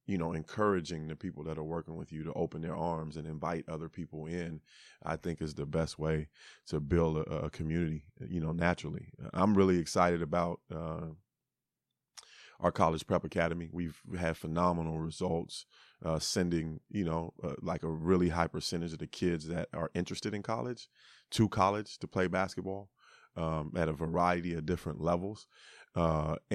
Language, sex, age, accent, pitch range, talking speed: English, male, 30-49, American, 80-90 Hz, 175 wpm